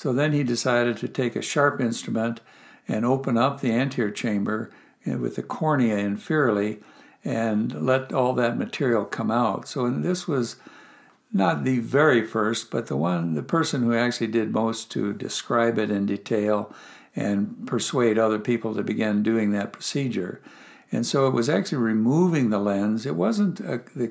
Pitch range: 110-135 Hz